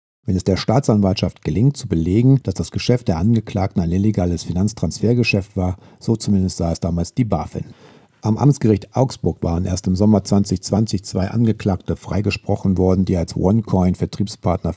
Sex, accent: male, German